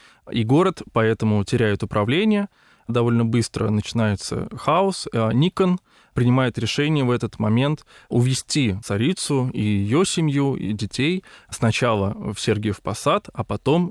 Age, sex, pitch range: 20-39, male, 105-145 Hz